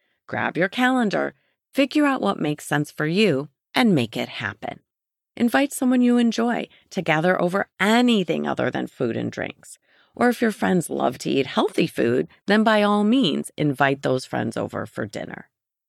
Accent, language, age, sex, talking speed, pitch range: American, English, 30-49, female, 175 wpm, 140-225 Hz